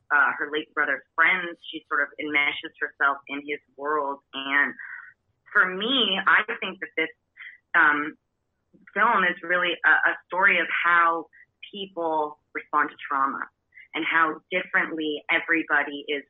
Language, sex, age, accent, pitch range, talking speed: English, female, 30-49, American, 145-170 Hz, 140 wpm